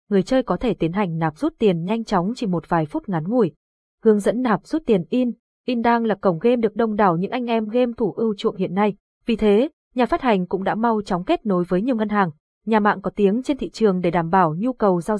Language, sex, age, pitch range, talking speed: Vietnamese, female, 20-39, 190-235 Hz, 270 wpm